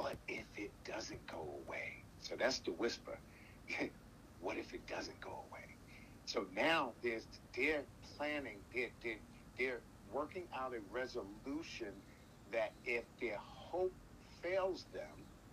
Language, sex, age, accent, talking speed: English, male, 50-69, American, 130 wpm